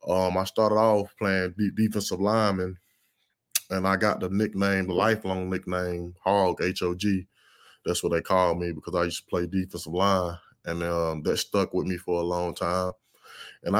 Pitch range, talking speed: 90-105 Hz, 180 wpm